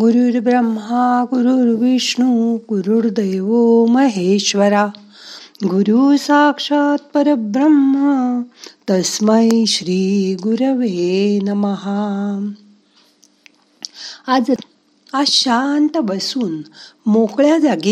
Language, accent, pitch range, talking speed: Marathi, native, 195-265 Hz, 65 wpm